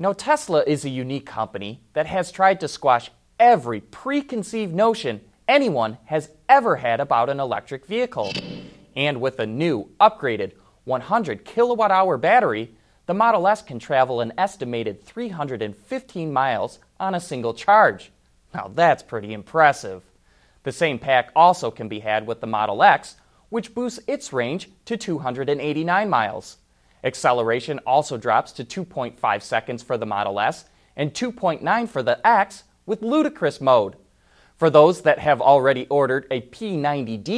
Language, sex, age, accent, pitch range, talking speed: English, male, 30-49, American, 120-205 Hz, 145 wpm